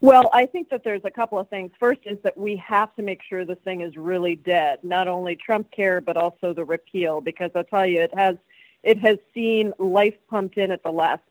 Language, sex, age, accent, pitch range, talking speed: English, female, 40-59, American, 180-215 Hz, 240 wpm